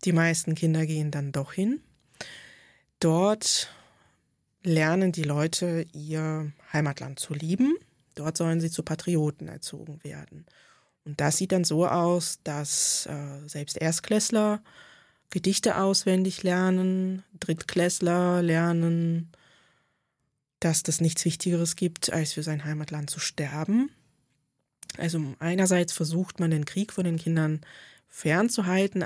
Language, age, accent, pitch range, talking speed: German, 20-39, German, 155-180 Hz, 120 wpm